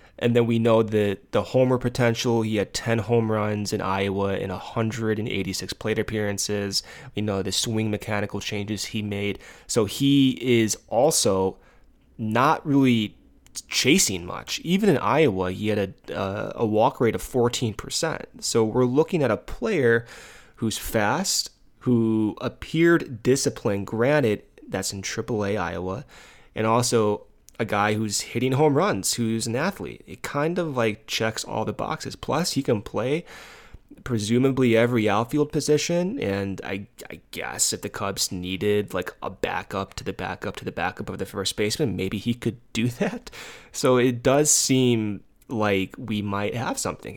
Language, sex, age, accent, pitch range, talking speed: English, male, 20-39, American, 100-120 Hz, 160 wpm